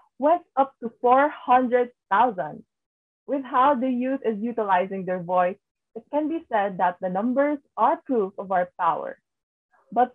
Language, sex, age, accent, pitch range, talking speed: English, female, 20-39, Filipino, 225-295 Hz, 150 wpm